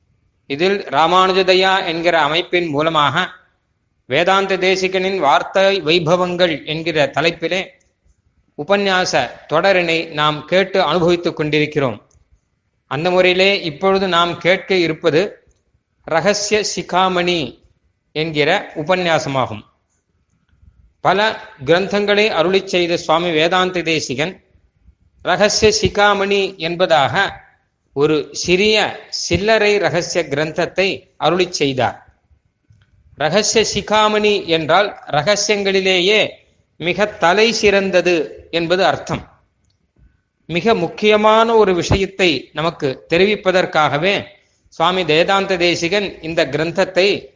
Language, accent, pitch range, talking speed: Tamil, native, 155-195 Hz, 75 wpm